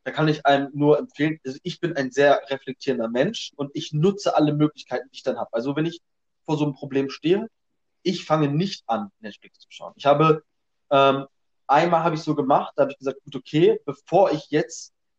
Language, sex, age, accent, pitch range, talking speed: German, male, 20-39, German, 135-170 Hz, 220 wpm